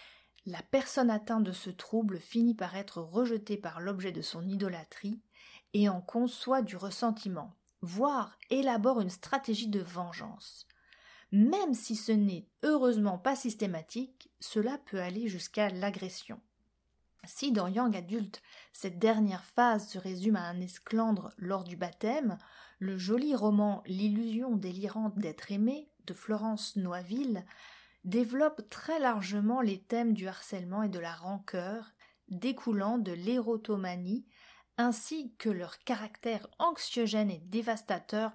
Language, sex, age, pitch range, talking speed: French, female, 30-49, 195-240 Hz, 135 wpm